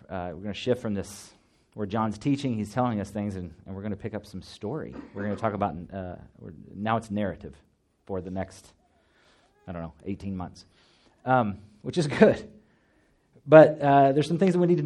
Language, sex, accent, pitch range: English, male, American, 95-115 Hz